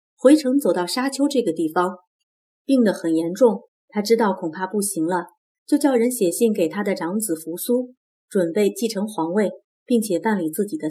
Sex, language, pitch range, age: female, Chinese, 180-245 Hz, 30-49